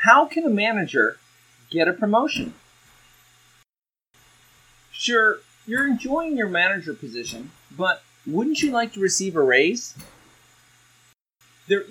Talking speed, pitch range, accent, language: 110 wpm, 160-235 Hz, American, English